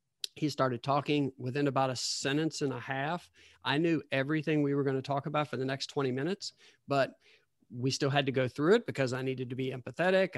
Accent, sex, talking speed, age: American, male, 215 wpm, 40-59